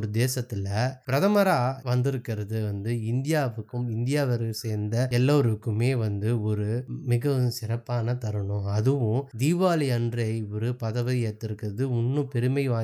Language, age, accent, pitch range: Tamil, 20-39, native, 110-135 Hz